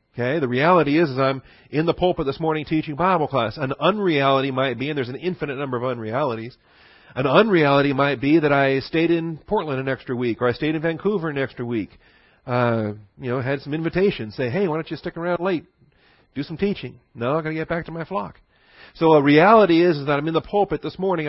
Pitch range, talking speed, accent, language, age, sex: 130-175 Hz, 235 wpm, American, English, 40-59, male